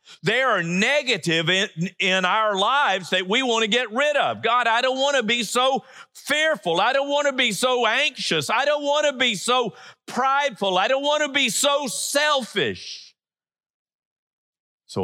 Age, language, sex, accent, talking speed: 50-69, English, male, American, 175 wpm